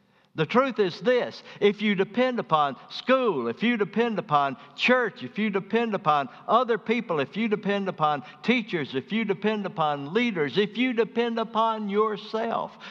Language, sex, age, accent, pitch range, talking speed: English, male, 60-79, American, 135-210 Hz, 165 wpm